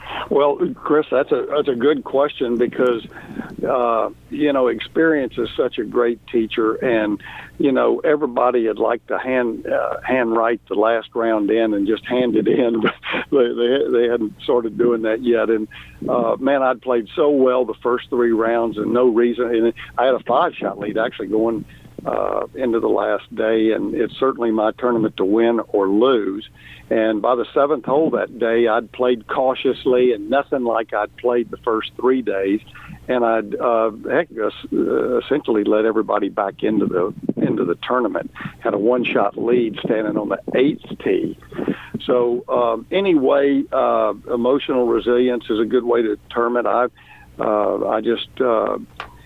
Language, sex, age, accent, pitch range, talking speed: English, male, 60-79, American, 110-125 Hz, 175 wpm